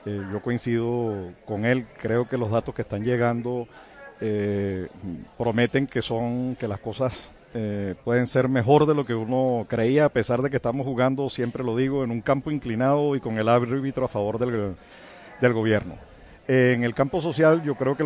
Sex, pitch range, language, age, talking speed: male, 115-145 Hz, Spanish, 50-69, 190 wpm